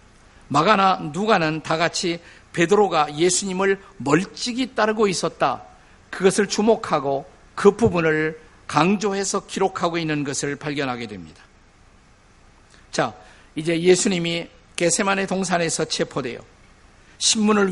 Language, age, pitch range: Korean, 50-69, 140-195 Hz